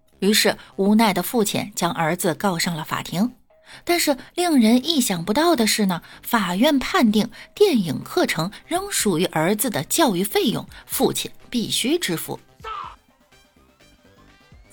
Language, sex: Chinese, female